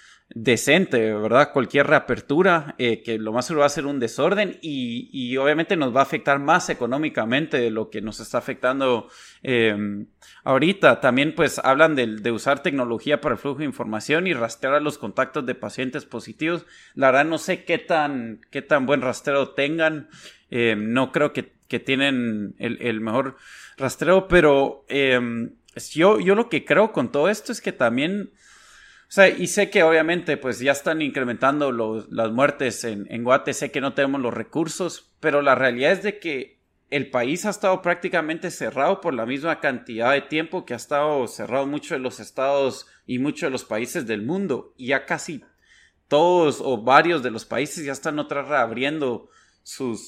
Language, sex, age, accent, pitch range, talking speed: Spanish, male, 20-39, Mexican, 120-160 Hz, 185 wpm